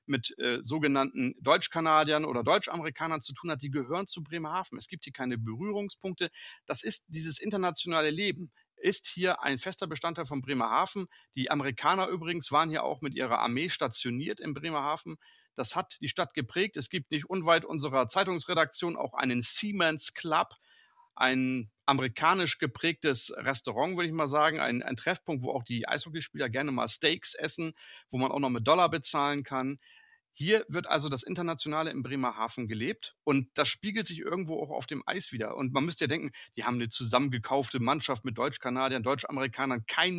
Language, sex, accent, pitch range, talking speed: German, male, German, 130-175 Hz, 175 wpm